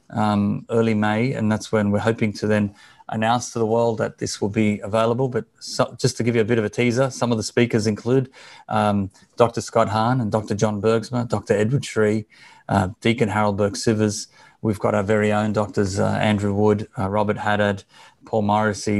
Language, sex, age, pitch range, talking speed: English, male, 30-49, 105-120 Hz, 195 wpm